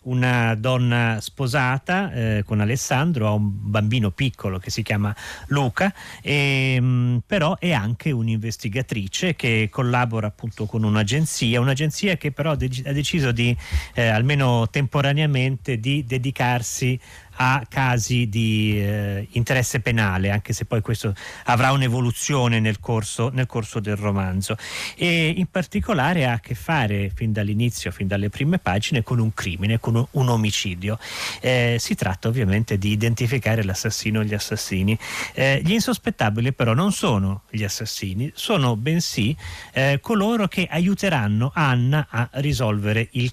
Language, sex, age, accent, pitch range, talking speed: Italian, male, 40-59, native, 110-140 Hz, 135 wpm